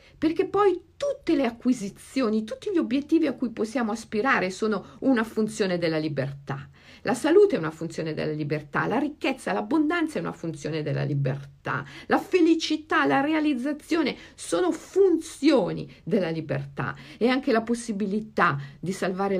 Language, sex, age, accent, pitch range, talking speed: Italian, female, 50-69, native, 140-230 Hz, 140 wpm